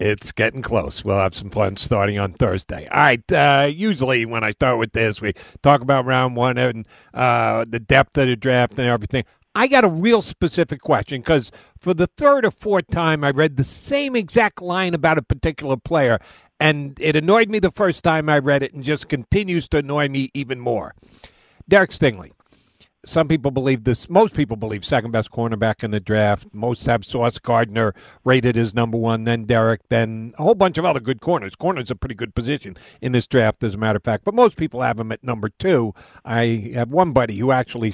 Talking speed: 210 wpm